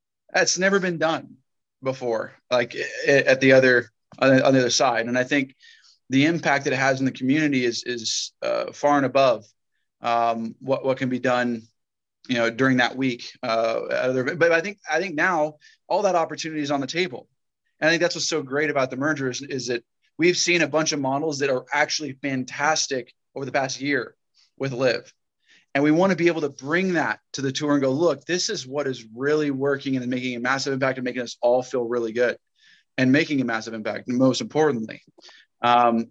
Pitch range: 125-155 Hz